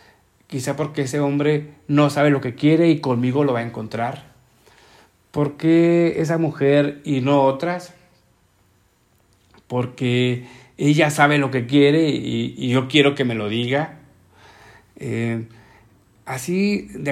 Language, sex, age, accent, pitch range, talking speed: Spanish, male, 50-69, Mexican, 120-150 Hz, 135 wpm